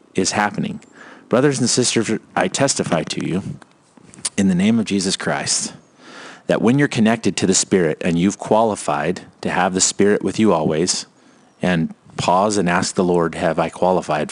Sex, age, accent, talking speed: male, 30-49, American, 170 wpm